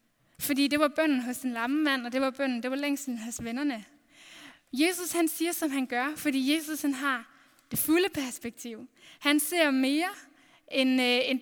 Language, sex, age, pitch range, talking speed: Danish, female, 10-29, 245-290 Hz, 190 wpm